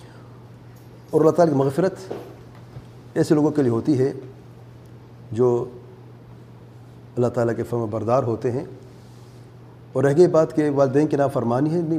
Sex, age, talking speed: male, 40-59, 130 wpm